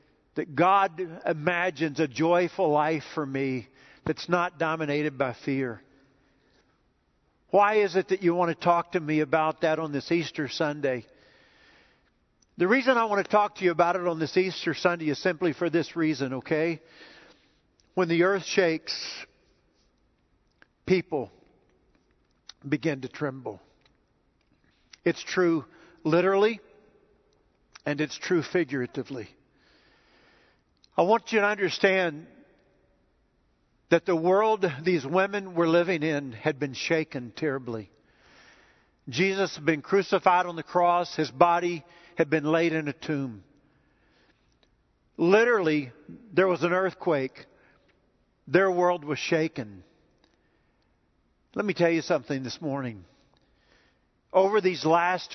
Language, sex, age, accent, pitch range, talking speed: English, male, 50-69, American, 140-180 Hz, 125 wpm